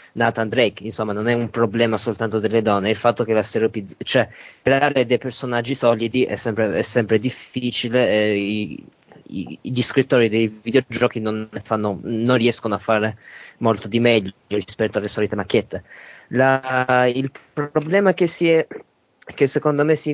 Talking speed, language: 165 wpm, Italian